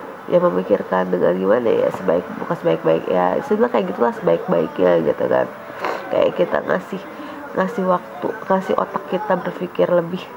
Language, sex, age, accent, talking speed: Indonesian, female, 20-39, native, 145 wpm